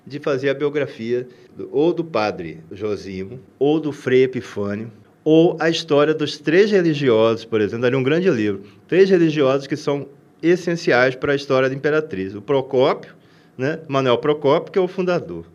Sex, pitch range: male, 125-170 Hz